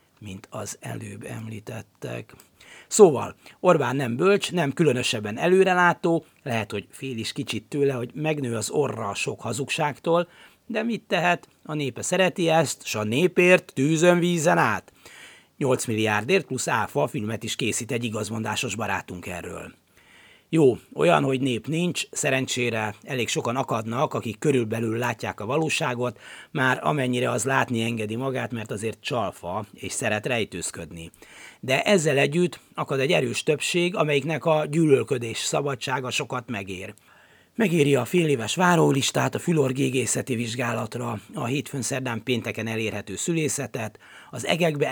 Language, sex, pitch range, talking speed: Hungarian, male, 115-155 Hz, 140 wpm